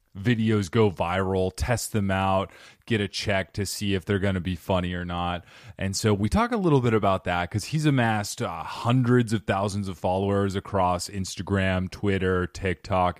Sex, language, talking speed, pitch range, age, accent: male, English, 185 wpm, 95-115 Hz, 30-49, American